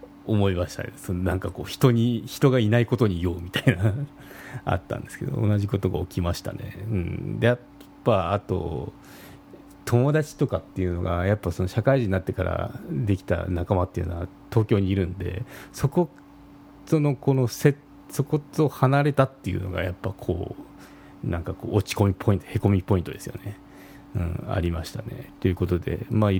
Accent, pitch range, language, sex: native, 95-120 Hz, Japanese, male